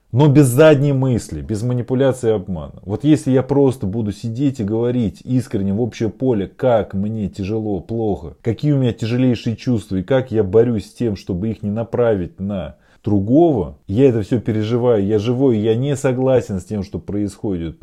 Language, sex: Russian, male